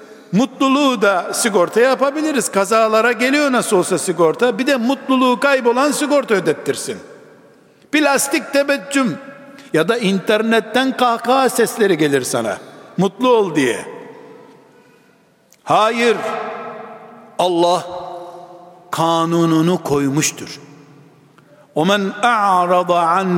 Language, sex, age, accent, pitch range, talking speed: Turkish, male, 60-79, native, 190-265 Hz, 85 wpm